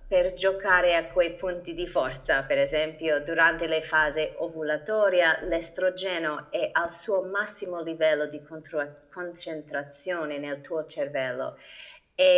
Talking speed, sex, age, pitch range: 120 wpm, female, 30-49, 155-195 Hz